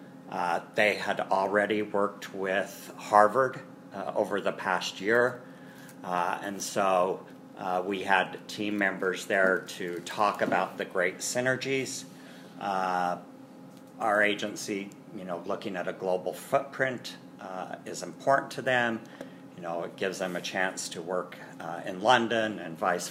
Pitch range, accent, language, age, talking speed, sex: 90-100 Hz, American, English, 50-69, 145 wpm, male